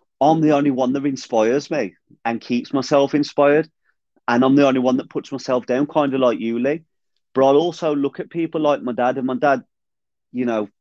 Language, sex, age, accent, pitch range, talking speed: English, male, 30-49, British, 120-145 Hz, 215 wpm